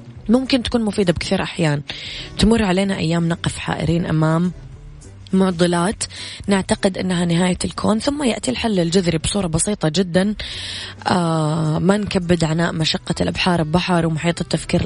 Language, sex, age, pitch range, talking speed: Arabic, female, 20-39, 160-195 Hz, 130 wpm